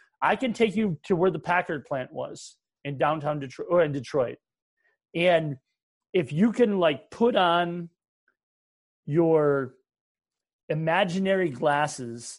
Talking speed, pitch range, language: 125 wpm, 135-175 Hz, English